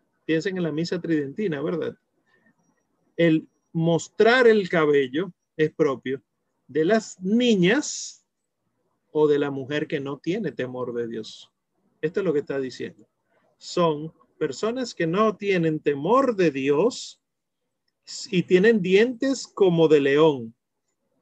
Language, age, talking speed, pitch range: Spanish, 40-59, 125 wpm, 135-175 Hz